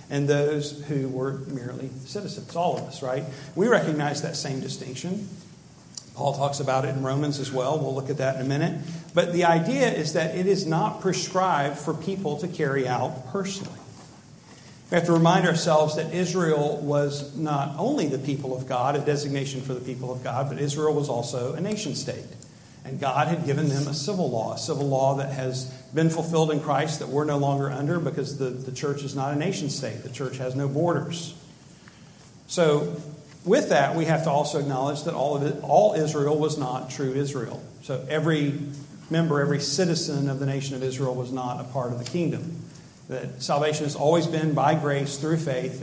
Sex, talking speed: male, 200 wpm